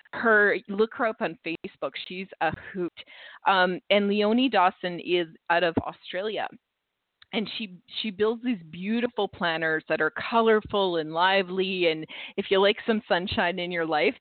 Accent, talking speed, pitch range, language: American, 160 wpm, 175-235 Hz, English